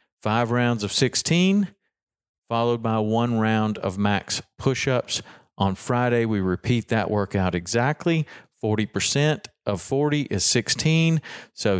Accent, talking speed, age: American, 120 wpm, 40-59